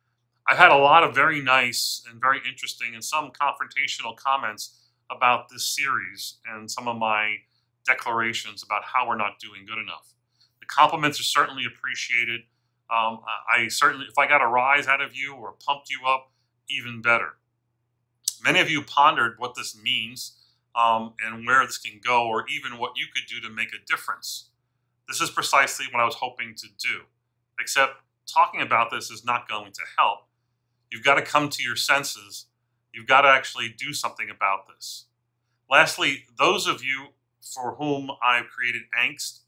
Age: 40-59